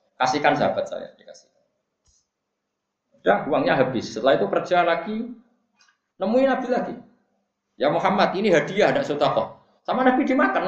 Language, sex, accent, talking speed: Indonesian, male, native, 130 wpm